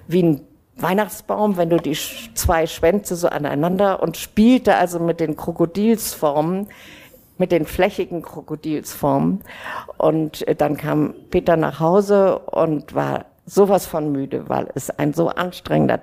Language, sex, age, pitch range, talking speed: German, female, 50-69, 145-185 Hz, 135 wpm